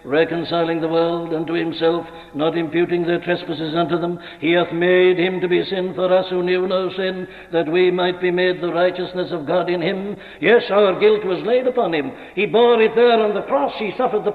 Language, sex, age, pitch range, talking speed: English, male, 60-79, 160-200 Hz, 220 wpm